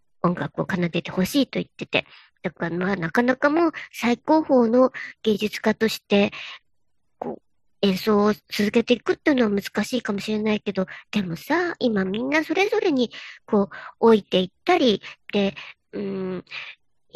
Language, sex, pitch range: Japanese, male, 205-275 Hz